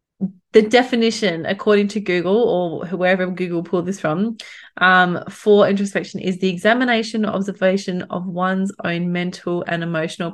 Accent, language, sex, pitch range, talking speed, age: Australian, English, female, 195-245 Hz, 140 wpm, 20-39